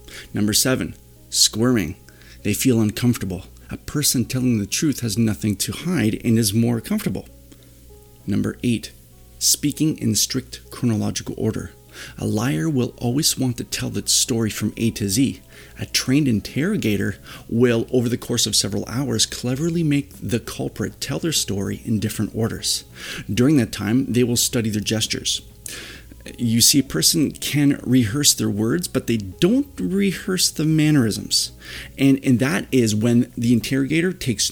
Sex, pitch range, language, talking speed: male, 100-135 Hz, English, 155 wpm